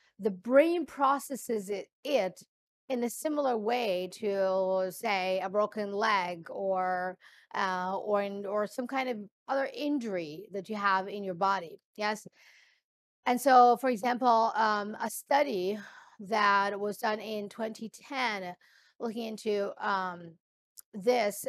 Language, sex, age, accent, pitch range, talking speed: English, female, 40-59, American, 205-260 Hz, 130 wpm